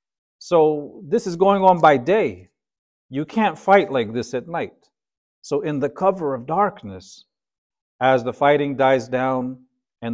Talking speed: 155 wpm